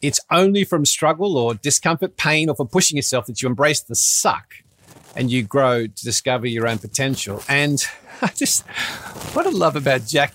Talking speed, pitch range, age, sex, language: 185 wpm, 120-155 Hz, 40-59, male, English